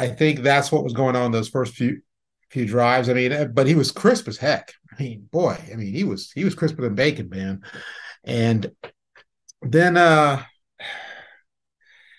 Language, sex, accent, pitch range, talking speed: English, male, American, 110-135 Hz, 175 wpm